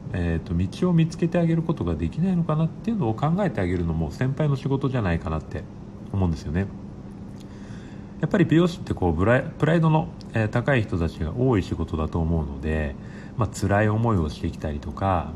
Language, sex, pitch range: Japanese, male, 90-135 Hz